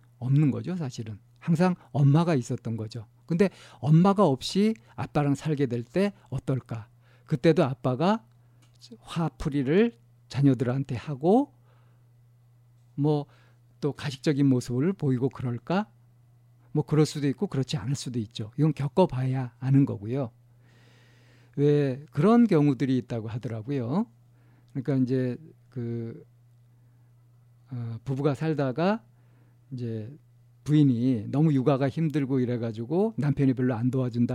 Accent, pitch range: native, 120-150 Hz